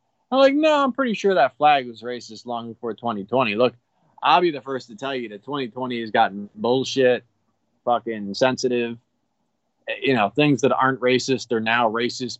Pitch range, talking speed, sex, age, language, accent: 105-125 Hz, 180 wpm, male, 20-39, English, American